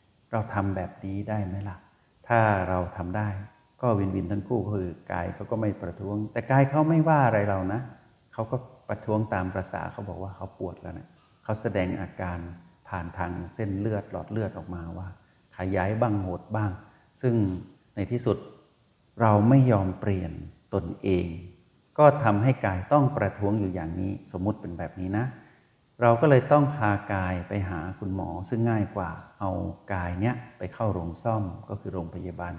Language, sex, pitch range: Thai, male, 90-110 Hz